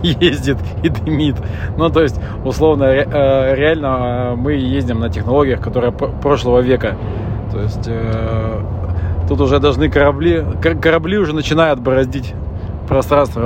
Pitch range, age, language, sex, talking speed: 105-135 Hz, 20-39, Russian, male, 115 wpm